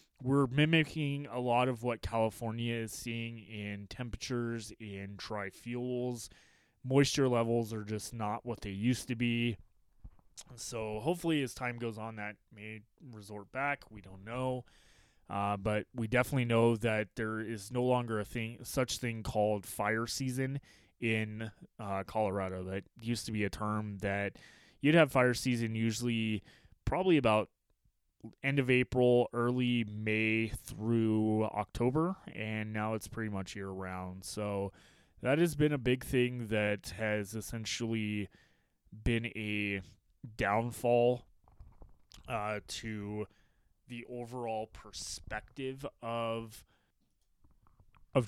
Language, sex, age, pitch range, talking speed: English, male, 20-39, 105-125 Hz, 130 wpm